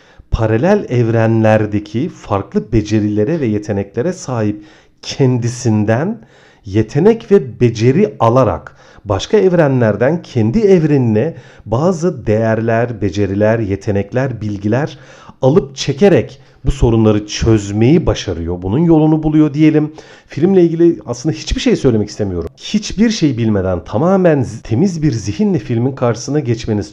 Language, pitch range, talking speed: Turkish, 110-160 Hz, 105 wpm